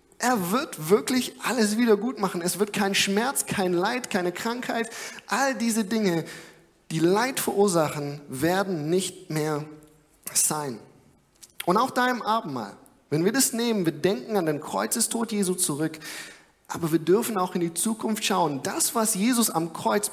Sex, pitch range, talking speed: male, 155-210 Hz, 160 wpm